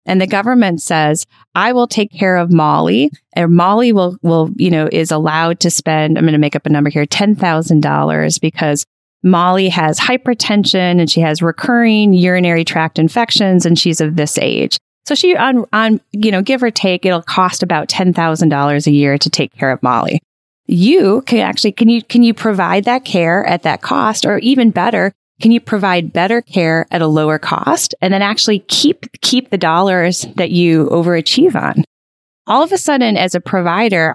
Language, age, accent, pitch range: English, 30-49, American, 155-205 Hz